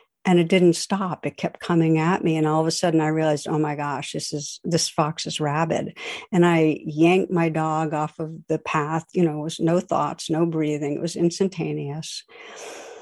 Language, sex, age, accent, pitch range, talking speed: English, female, 60-79, American, 155-185 Hz, 205 wpm